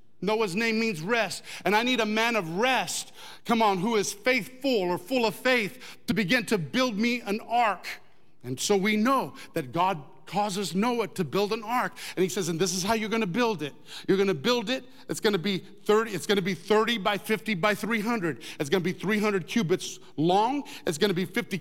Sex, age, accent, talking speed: male, 50-69, American, 230 wpm